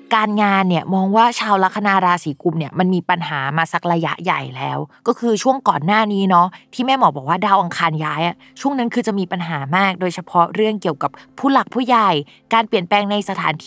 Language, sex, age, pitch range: Thai, female, 20-39, 170-220 Hz